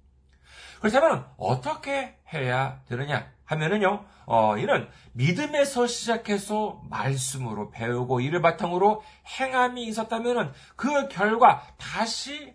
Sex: male